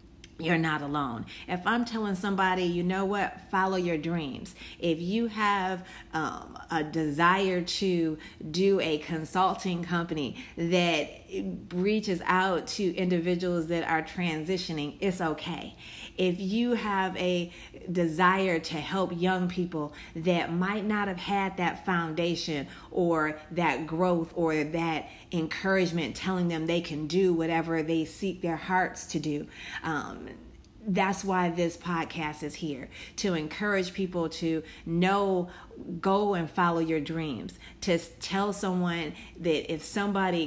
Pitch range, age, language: 160-190 Hz, 30-49, English